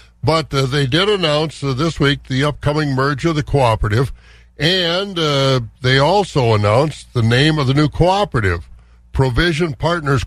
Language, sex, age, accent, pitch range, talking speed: English, male, 60-79, American, 125-165 Hz, 160 wpm